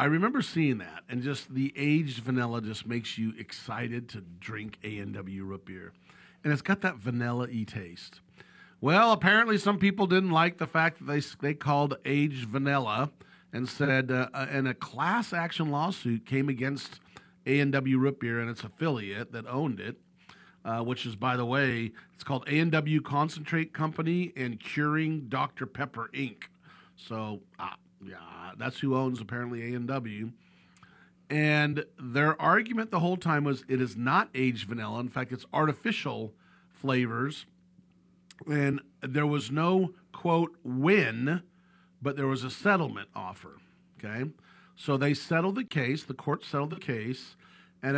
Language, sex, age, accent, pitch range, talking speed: English, male, 50-69, American, 120-160 Hz, 155 wpm